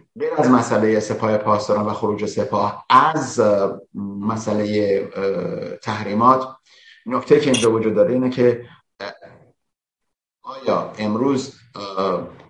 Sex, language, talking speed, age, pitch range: male, Persian, 95 wpm, 50-69, 105-130 Hz